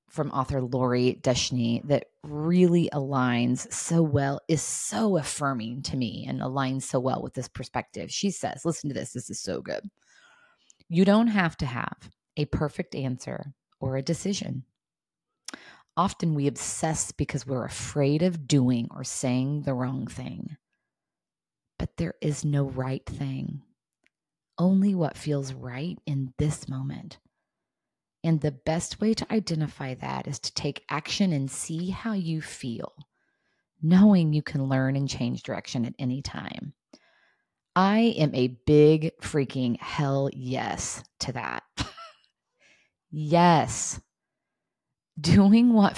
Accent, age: American, 30-49